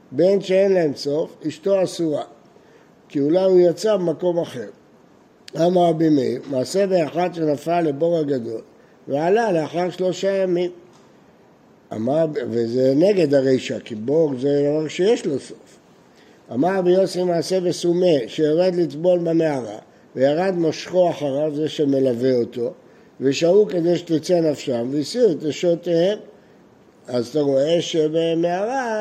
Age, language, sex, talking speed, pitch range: 60-79, Hebrew, male, 125 wpm, 145-180 Hz